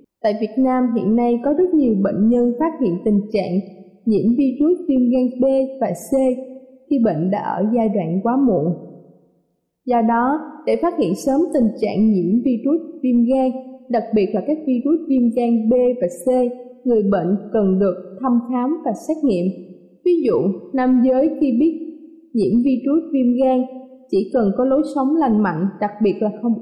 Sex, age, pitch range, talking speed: female, 20-39, 215-265 Hz, 185 wpm